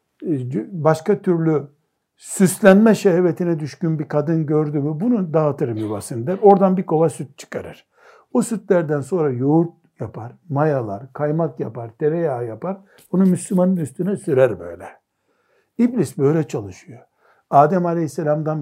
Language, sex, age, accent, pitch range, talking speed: Turkish, male, 60-79, native, 150-190 Hz, 115 wpm